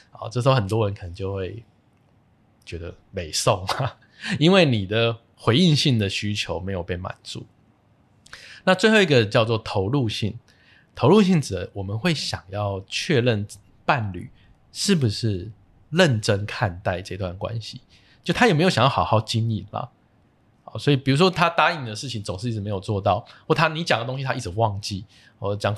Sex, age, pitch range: male, 20-39, 100-130 Hz